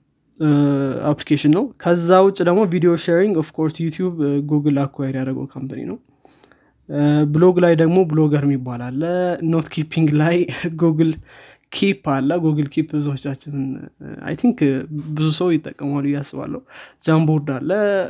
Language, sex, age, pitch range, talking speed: Amharic, male, 20-39, 145-170 Hz, 75 wpm